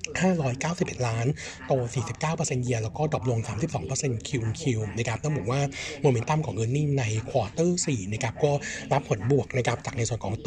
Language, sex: Thai, male